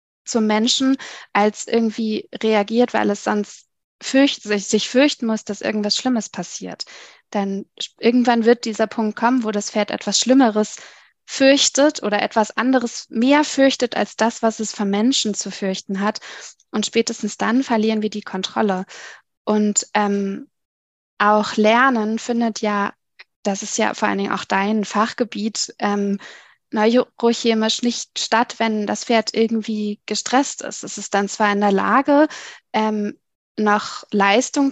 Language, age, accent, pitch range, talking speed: German, 20-39, German, 205-240 Hz, 140 wpm